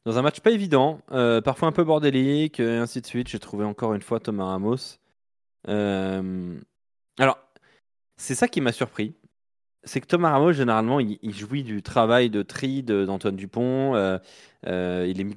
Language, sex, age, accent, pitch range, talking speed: French, male, 20-39, French, 100-130 Hz, 185 wpm